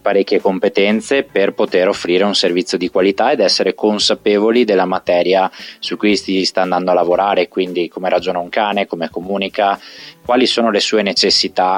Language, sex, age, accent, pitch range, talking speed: Italian, male, 20-39, native, 95-120 Hz, 170 wpm